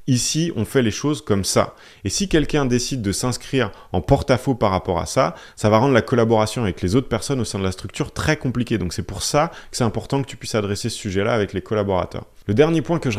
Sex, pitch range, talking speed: male, 100-135 Hz, 255 wpm